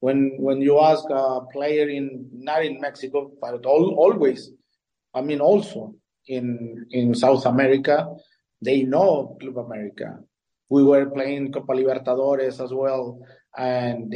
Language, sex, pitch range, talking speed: English, male, 135-155 Hz, 135 wpm